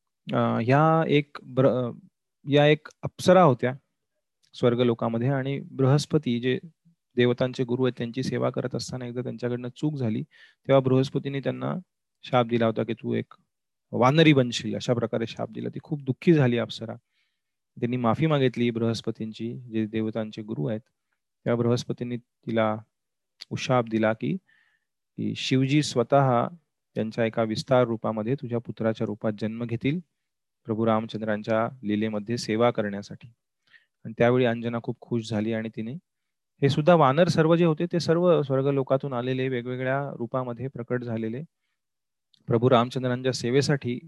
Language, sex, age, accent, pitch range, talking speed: Marathi, male, 30-49, native, 115-140 Hz, 115 wpm